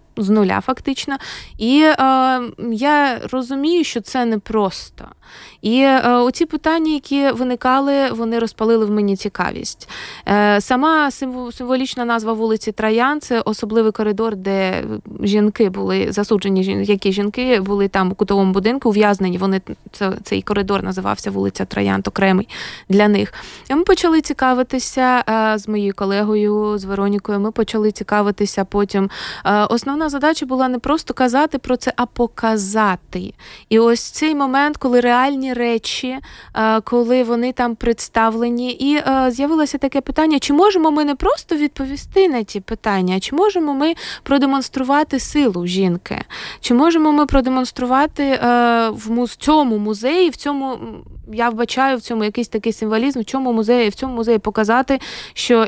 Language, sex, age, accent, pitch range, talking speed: Ukrainian, female, 20-39, native, 210-270 Hz, 140 wpm